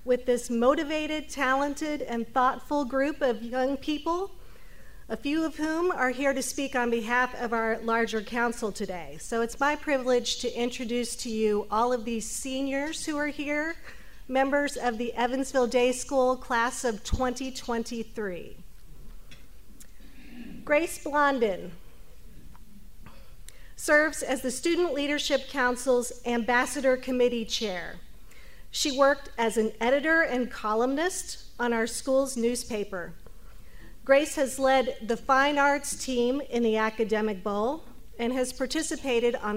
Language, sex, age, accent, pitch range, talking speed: English, female, 40-59, American, 230-275 Hz, 130 wpm